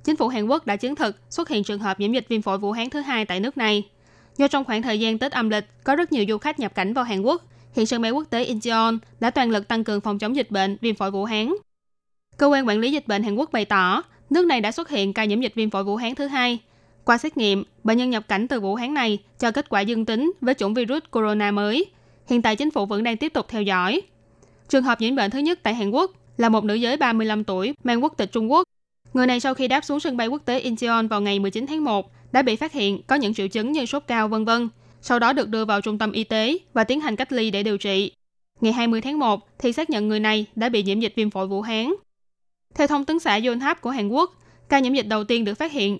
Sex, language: female, Vietnamese